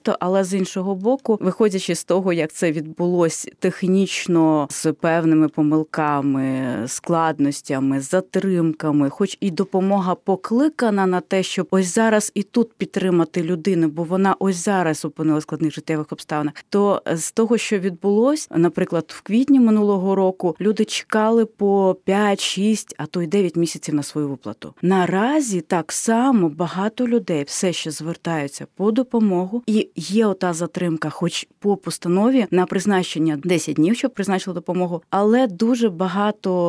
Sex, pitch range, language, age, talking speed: female, 165-210 Hz, Ukrainian, 20-39, 140 wpm